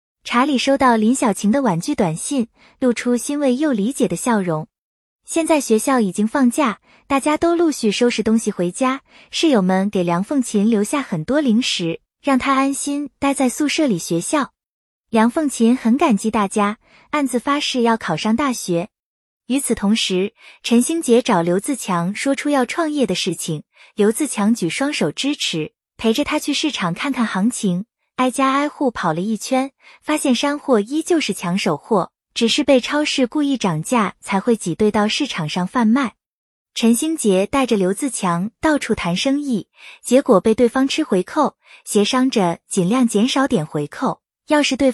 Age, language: 20-39, Chinese